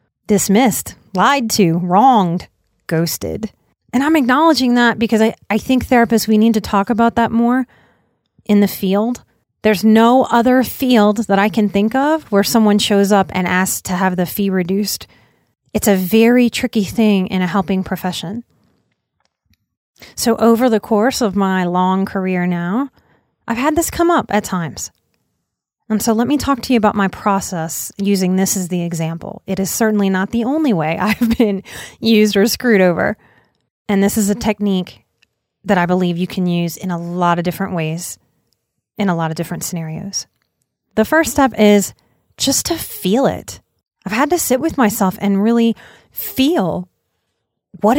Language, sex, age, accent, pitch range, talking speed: English, female, 30-49, American, 185-235 Hz, 175 wpm